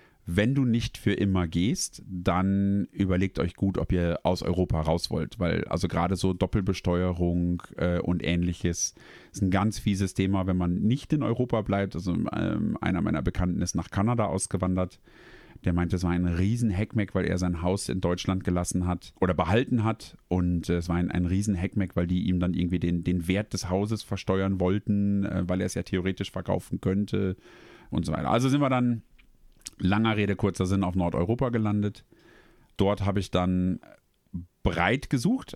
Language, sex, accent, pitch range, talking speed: German, male, German, 90-110 Hz, 185 wpm